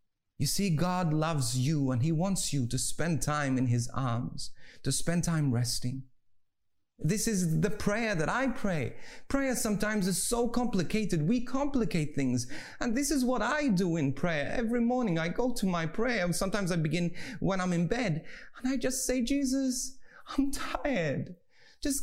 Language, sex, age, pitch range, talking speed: English, male, 30-49, 140-215 Hz, 175 wpm